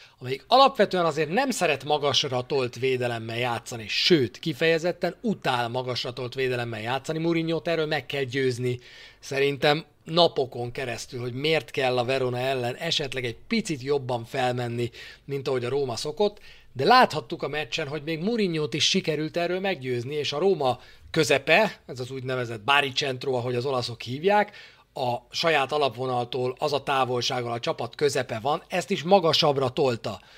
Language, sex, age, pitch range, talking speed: Hungarian, male, 40-59, 125-160 Hz, 150 wpm